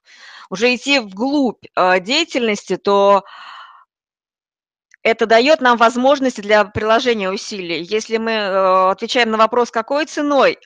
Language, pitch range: Russian, 200-260 Hz